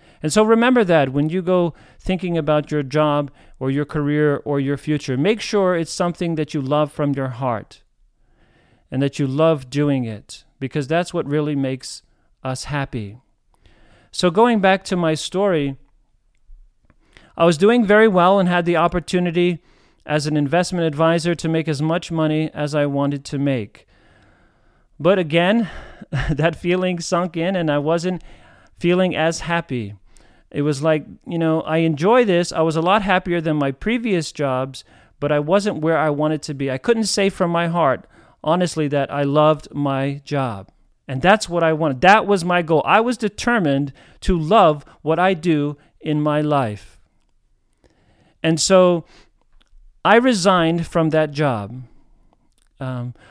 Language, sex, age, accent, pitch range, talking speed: English, male, 40-59, American, 140-180 Hz, 165 wpm